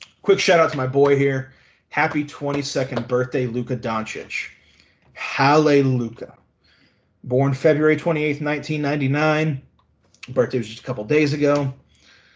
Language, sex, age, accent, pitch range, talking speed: English, male, 30-49, American, 115-140 Hz, 110 wpm